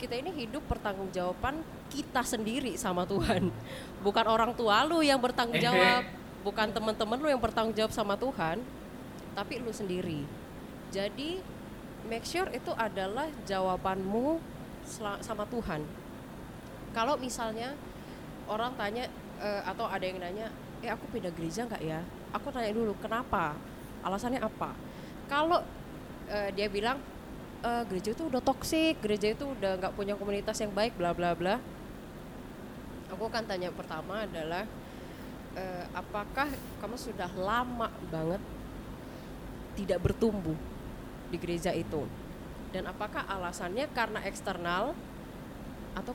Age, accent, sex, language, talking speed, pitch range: 20-39, native, female, Indonesian, 125 wpm, 185-235 Hz